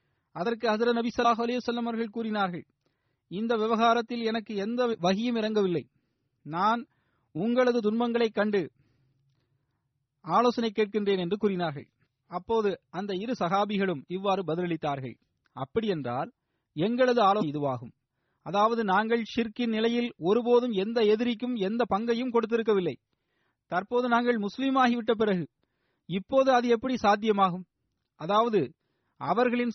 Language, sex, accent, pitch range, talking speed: Tamil, male, native, 170-230 Hz, 105 wpm